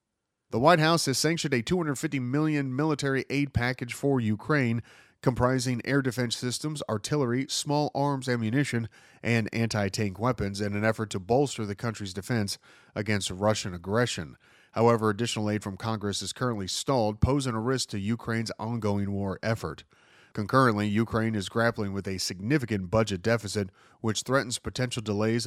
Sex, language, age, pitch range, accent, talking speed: male, English, 40-59, 105-135 Hz, American, 150 wpm